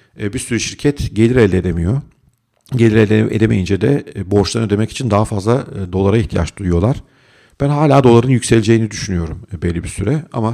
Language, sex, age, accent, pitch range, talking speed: Turkish, male, 50-69, native, 95-120 Hz, 155 wpm